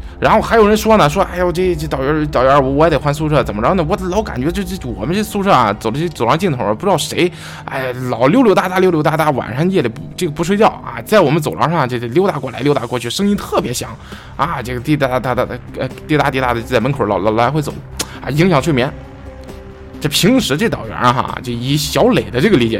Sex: male